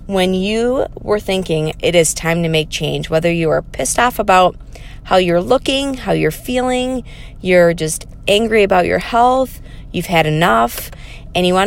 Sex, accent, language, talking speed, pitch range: female, American, English, 175 wpm, 160-210 Hz